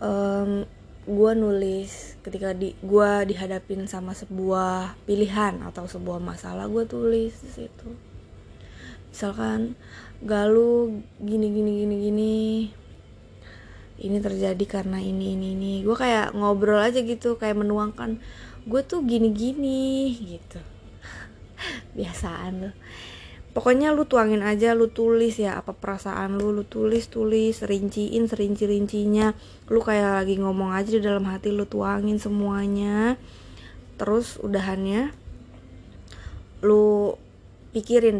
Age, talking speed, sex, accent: 20-39, 115 wpm, female, native